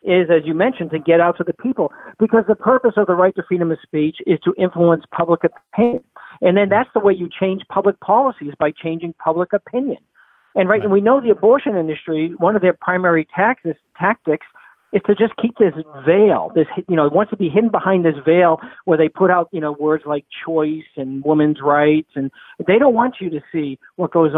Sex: male